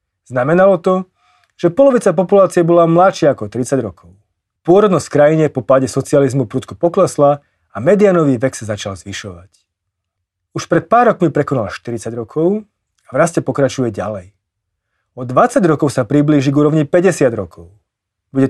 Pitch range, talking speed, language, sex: 100-155 Hz, 145 wpm, Slovak, male